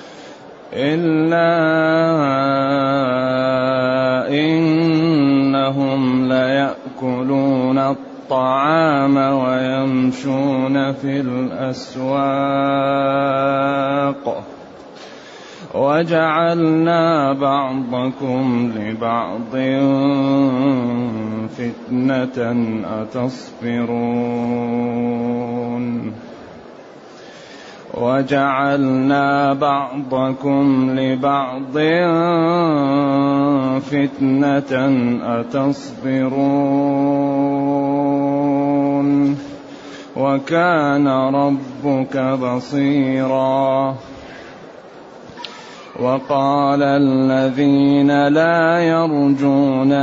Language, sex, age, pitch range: Arabic, male, 30-49, 130-140 Hz